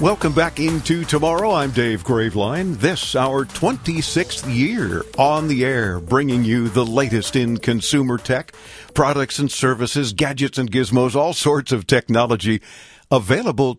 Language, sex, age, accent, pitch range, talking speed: English, male, 50-69, American, 115-145 Hz, 140 wpm